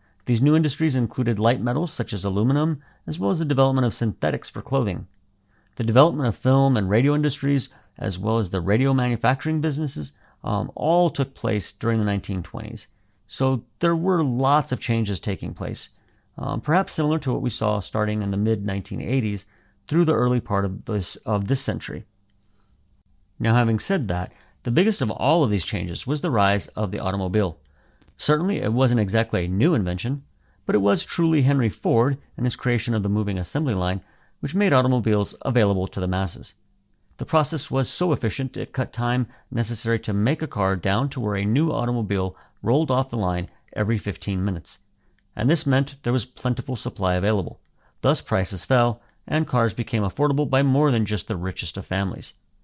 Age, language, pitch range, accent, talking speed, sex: 40-59, English, 100-135 Hz, American, 185 wpm, male